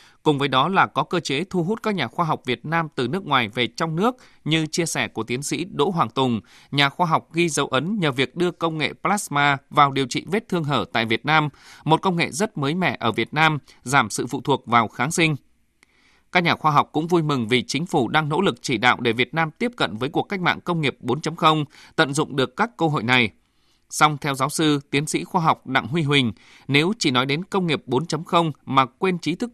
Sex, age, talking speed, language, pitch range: male, 20-39, 250 wpm, Vietnamese, 130-165 Hz